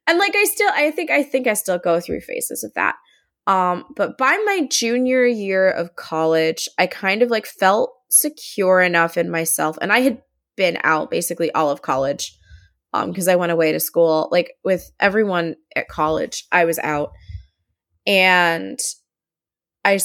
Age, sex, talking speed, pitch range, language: 20-39, female, 175 wpm, 165-240 Hz, English